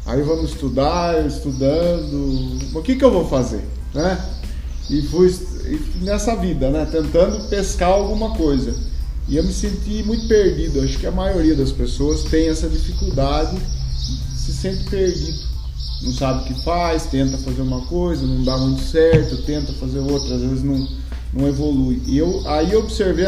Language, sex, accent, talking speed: Portuguese, male, Brazilian, 160 wpm